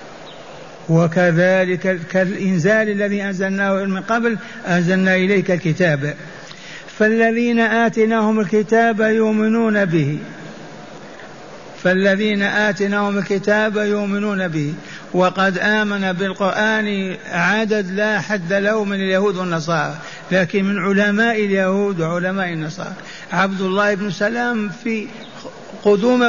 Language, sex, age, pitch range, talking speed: Arabic, male, 60-79, 185-215 Hz, 95 wpm